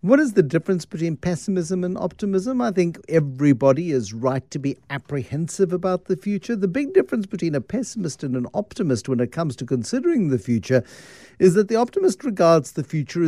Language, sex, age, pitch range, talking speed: English, male, 60-79, 125-190 Hz, 190 wpm